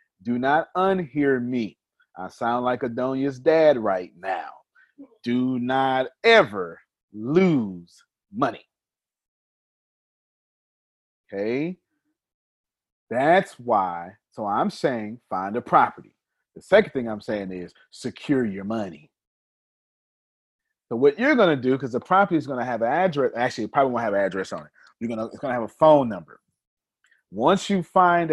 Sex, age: male, 30-49